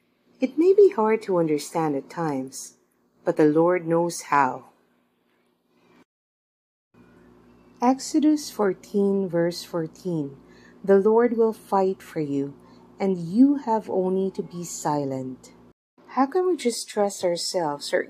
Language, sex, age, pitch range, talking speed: English, female, 40-59, 150-235 Hz, 125 wpm